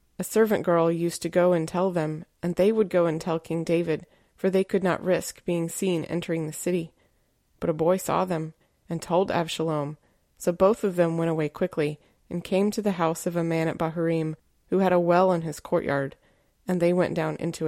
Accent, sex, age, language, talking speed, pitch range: American, female, 20-39, English, 215 wpm, 165-185 Hz